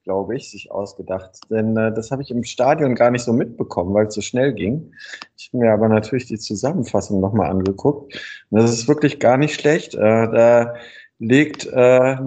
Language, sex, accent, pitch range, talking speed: German, male, German, 110-135 Hz, 195 wpm